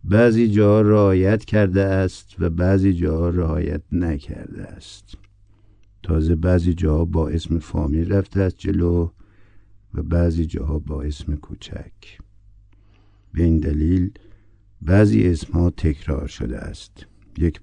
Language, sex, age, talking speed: Persian, male, 60-79, 120 wpm